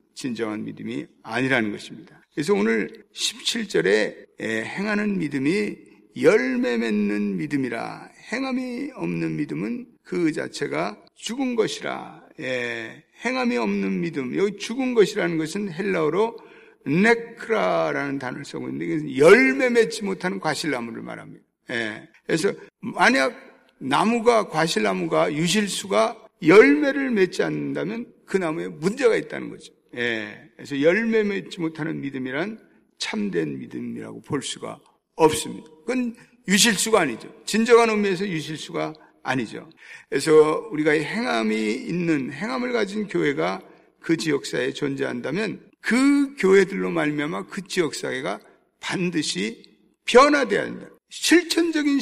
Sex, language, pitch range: male, Korean, 150-230 Hz